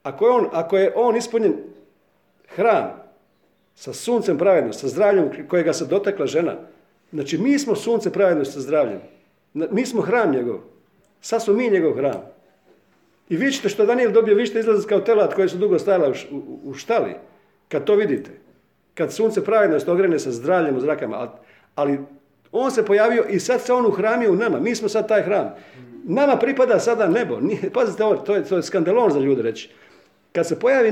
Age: 50-69